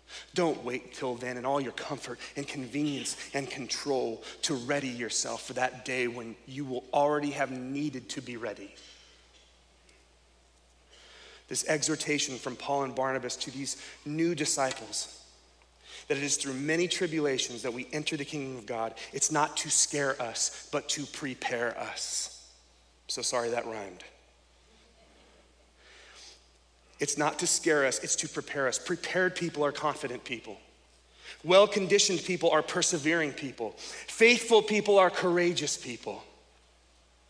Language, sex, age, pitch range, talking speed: English, male, 30-49, 115-160 Hz, 140 wpm